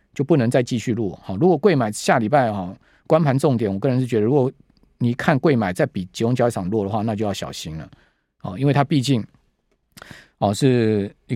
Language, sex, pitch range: Chinese, male, 110-150 Hz